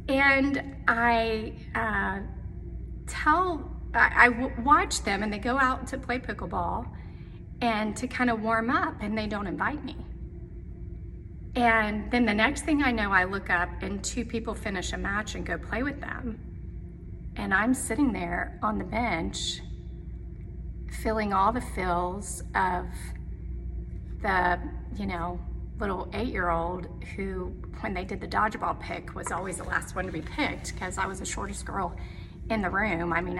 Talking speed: 160 wpm